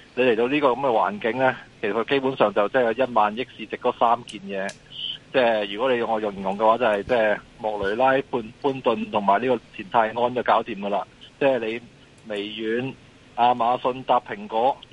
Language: Chinese